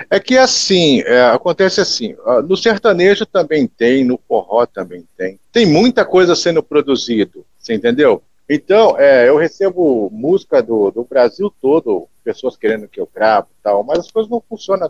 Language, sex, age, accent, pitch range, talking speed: Portuguese, male, 50-69, Brazilian, 140-220 Hz, 165 wpm